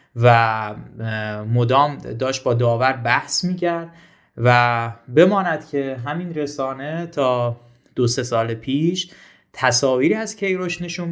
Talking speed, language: 115 wpm, Persian